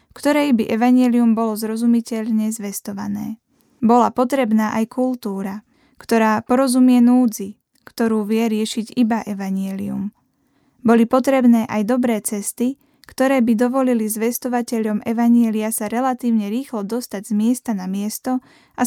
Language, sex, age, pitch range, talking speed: Slovak, female, 10-29, 215-245 Hz, 120 wpm